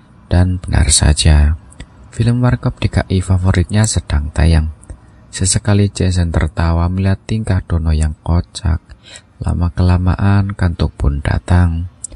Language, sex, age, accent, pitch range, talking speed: Indonesian, male, 20-39, native, 85-105 Hz, 105 wpm